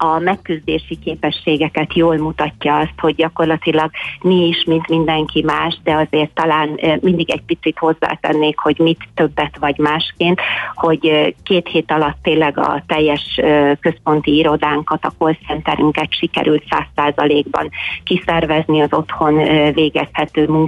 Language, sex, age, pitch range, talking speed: Hungarian, female, 30-49, 150-165 Hz, 125 wpm